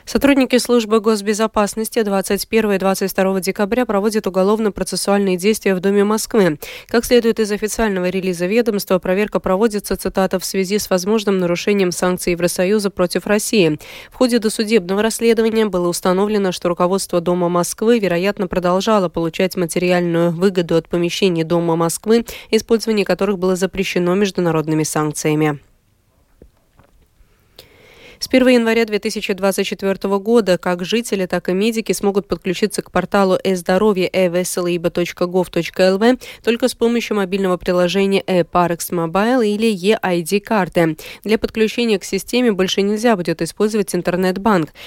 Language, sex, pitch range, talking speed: Russian, female, 180-215 Hz, 120 wpm